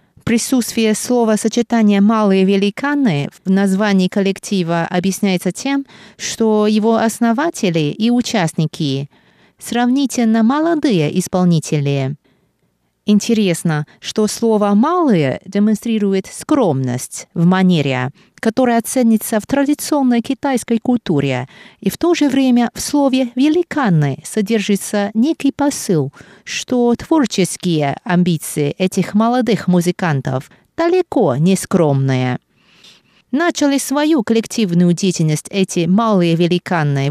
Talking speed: 95 wpm